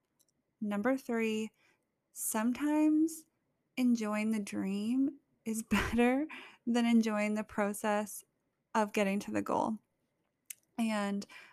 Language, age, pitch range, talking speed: English, 20-39, 205-240 Hz, 95 wpm